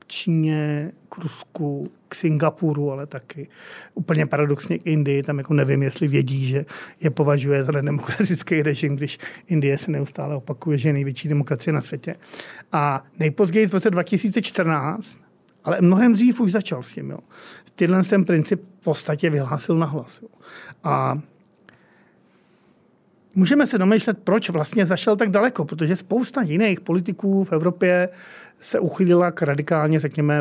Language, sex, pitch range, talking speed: Czech, male, 150-190 Hz, 145 wpm